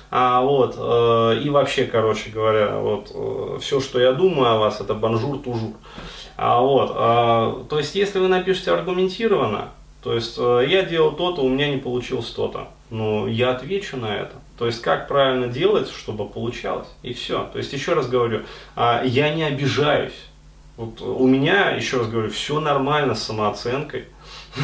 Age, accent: 20-39, native